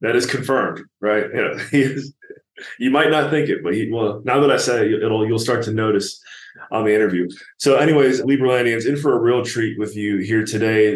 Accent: American